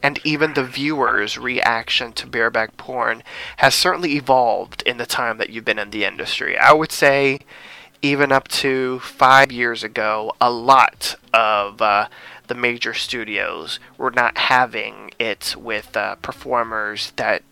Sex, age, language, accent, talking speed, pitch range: male, 20-39, English, American, 150 wpm, 120-140 Hz